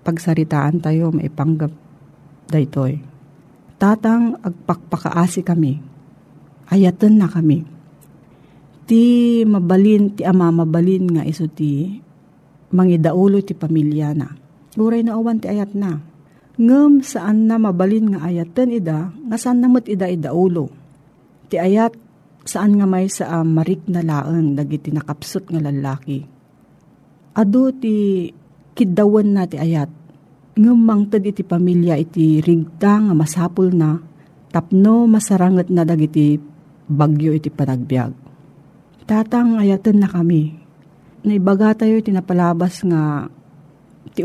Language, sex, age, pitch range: Filipino, female, 40-59, 155-200 Hz